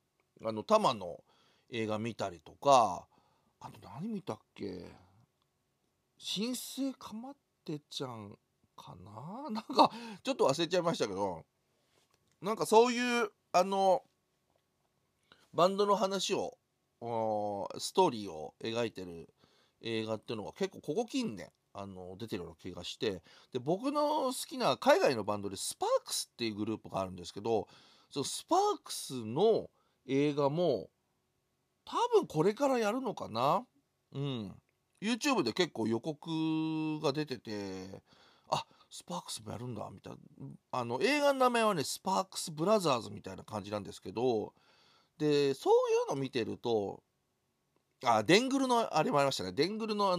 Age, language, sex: 40-59, Japanese, male